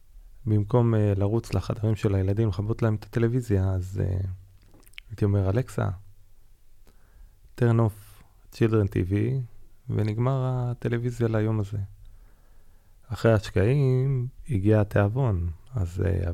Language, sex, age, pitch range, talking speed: Hebrew, male, 30-49, 95-115 Hz, 105 wpm